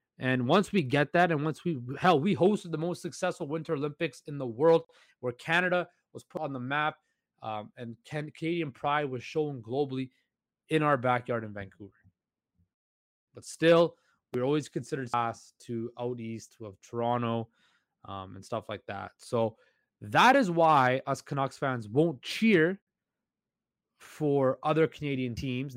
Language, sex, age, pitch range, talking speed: English, male, 20-39, 120-155 Hz, 155 wpm